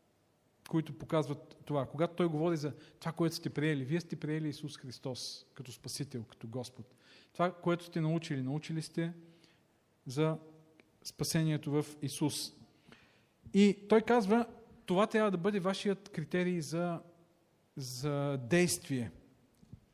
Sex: male